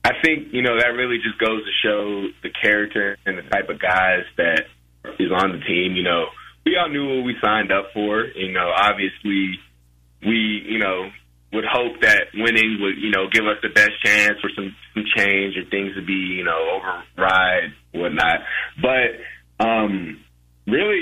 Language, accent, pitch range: English, American, 90-115 Hz